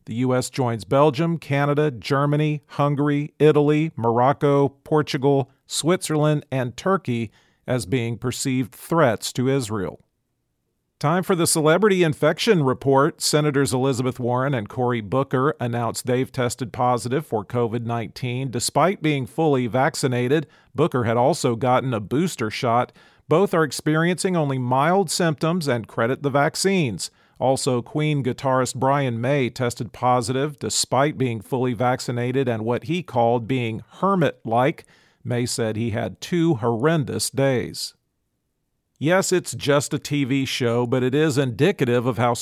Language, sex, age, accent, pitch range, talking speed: English, male, 40-59, American, 120-150 Hz, 135 wpm